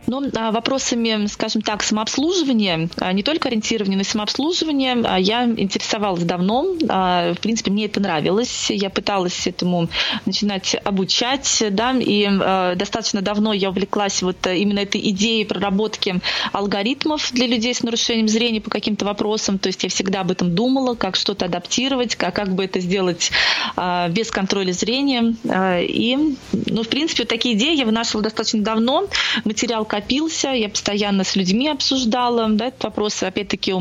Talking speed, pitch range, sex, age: 145 wpm, 195-240 Hz, female, 20-39